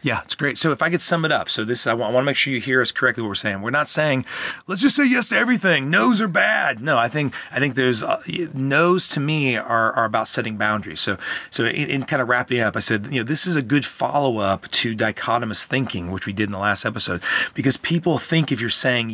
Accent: American